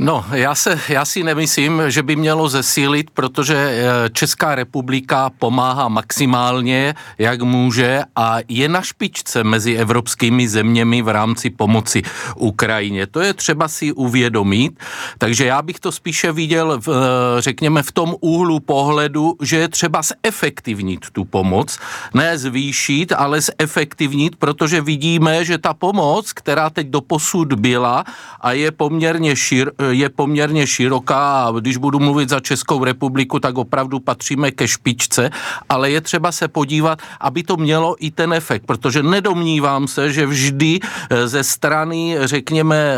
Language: Czech